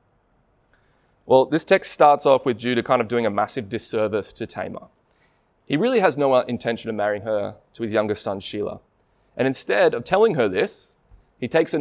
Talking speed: 190 wpm